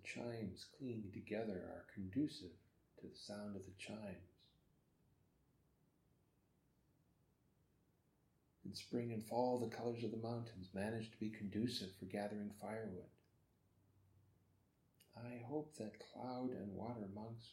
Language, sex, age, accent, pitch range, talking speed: English, male, 50-69, American, 95-120 Hz, 115 wpm